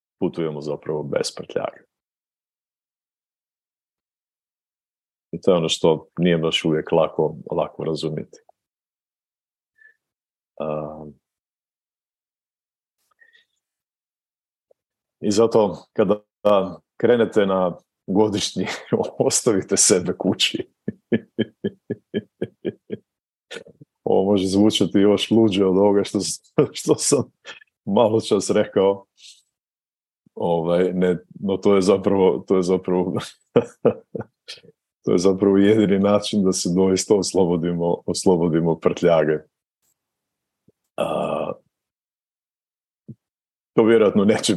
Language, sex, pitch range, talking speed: Croatian, male, 85-105 Hz, 80 wpm